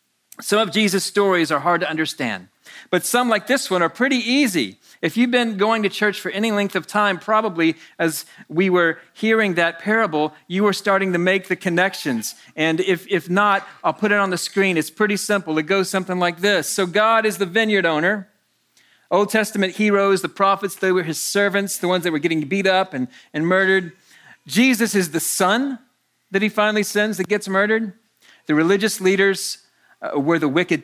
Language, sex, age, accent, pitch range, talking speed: English, male, 40-59, American, 165-210 Hz, 200 wpm